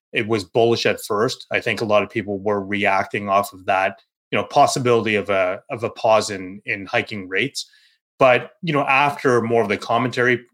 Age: 30-49